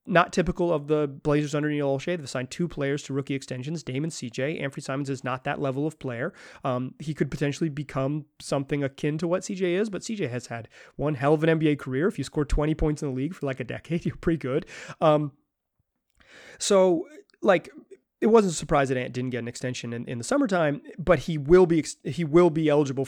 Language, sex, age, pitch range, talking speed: English, male, 30-49, 130-165 Hz, 225 wpm